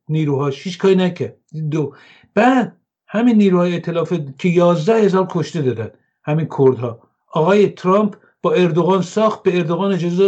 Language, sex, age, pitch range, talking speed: English, male, 50-69, 145-195 Hz, 140 wpm